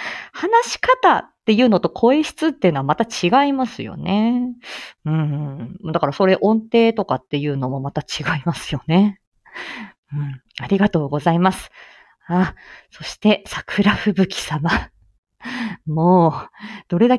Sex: female